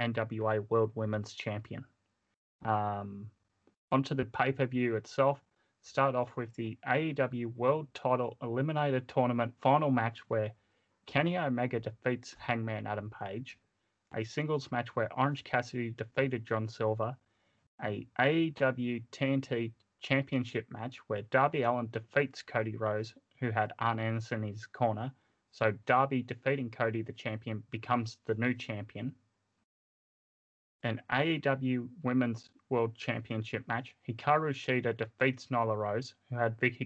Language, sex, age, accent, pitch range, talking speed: English, male, 20-39, Australian, 110-130 Hz, 125 wpm